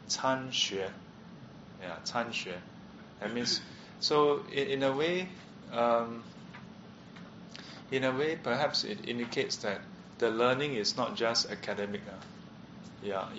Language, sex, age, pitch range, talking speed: English, male, 20-39, 110-140 Hz, 105 wpm